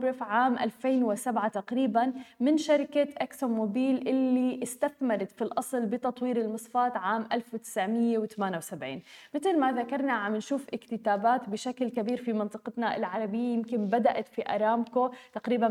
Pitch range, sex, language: 220-270 Hz, female, Arabic